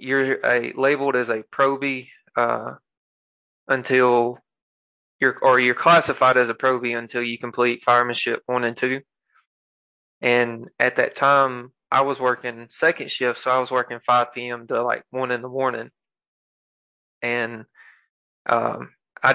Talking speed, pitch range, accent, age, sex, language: 140 wpm, 120-135 Hz, American, 20-39, male, English